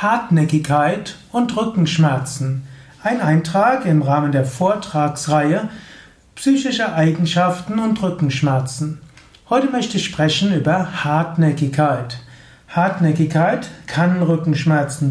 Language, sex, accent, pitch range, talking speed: German, male, German, 150-195 Hz, 85 wpm